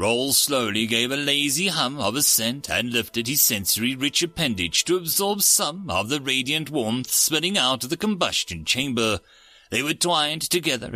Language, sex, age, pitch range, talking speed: English, male, 40-59, 115-160 Hz, 165 wpm